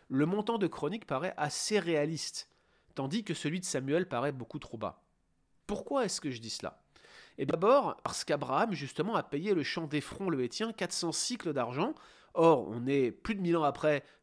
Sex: male